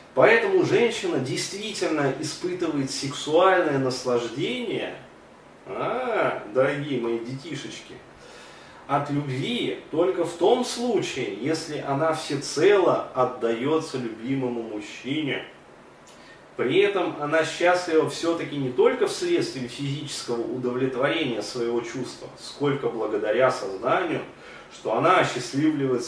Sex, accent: male, native